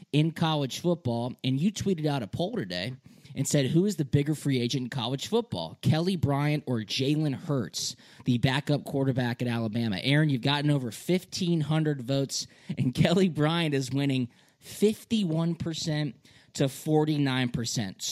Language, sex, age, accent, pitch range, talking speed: English, male, 20-39, American, 130-160 Hz, 150 wpm